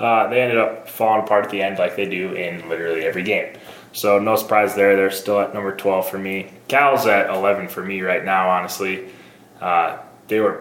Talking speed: 215 wpm